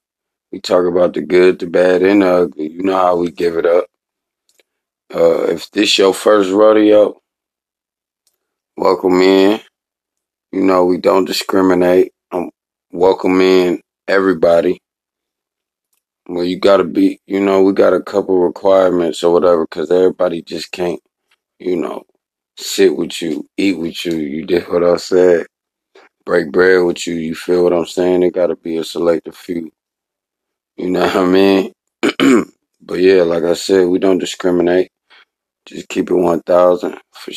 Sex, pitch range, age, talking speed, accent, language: male, 85-95 Hz, 30-49, 160 wpm, American, English